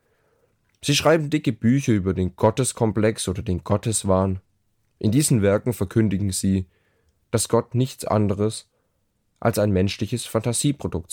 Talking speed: 125 wpm